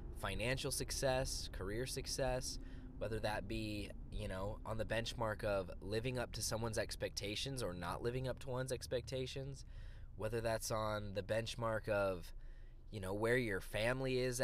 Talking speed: 155 wpm